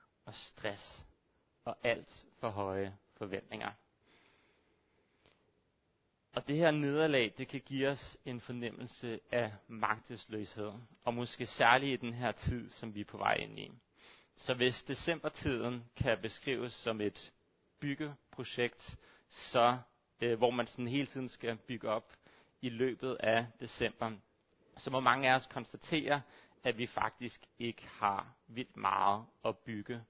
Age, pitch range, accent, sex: 30-49, 110-125 Hz, native, male